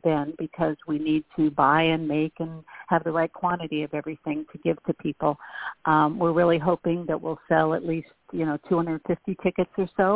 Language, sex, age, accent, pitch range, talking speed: English, female, 50-69, American, 155-180 Hz, 200 wpm